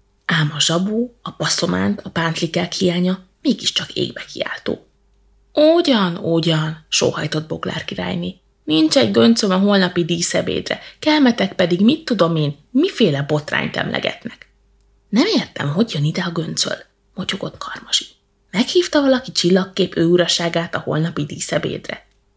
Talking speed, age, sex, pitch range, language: 130 wpm, 20-39, female, 170-255 Hz, Hungarian